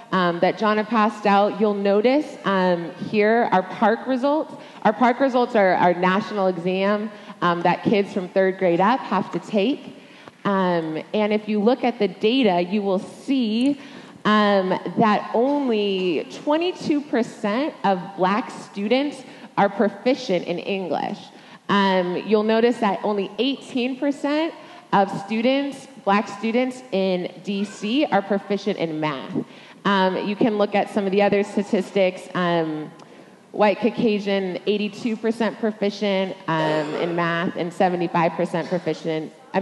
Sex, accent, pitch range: female, American, 185-230 Hz